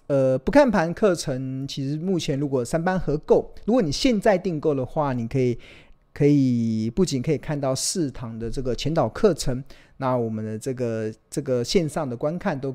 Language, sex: Chinese, male